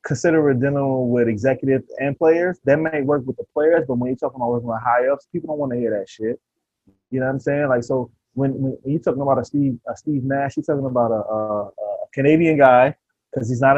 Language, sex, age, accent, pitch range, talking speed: English, male, 20-39, American, 120-150 Hz, 250 wpm